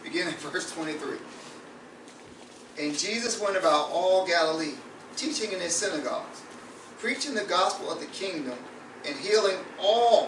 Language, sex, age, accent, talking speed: English, male, 40-59, American, 135 wpm